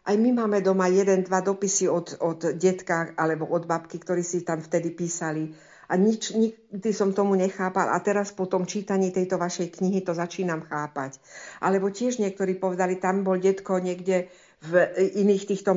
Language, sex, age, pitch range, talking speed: Slovak, female, 60-79, 175-200 Hz, 175 wpm